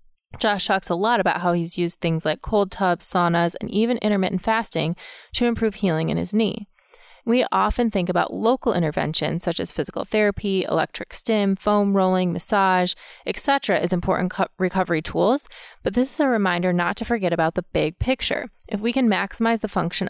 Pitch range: 170-215 Hz